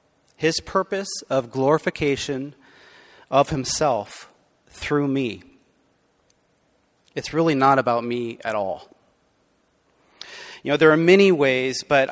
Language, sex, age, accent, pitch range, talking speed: English, male, 30-49, American, 125-160 Hz, 110 wpm